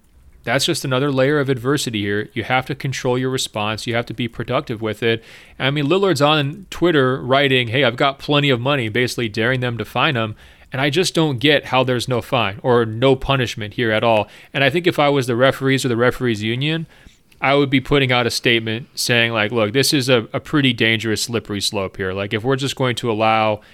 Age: 30-49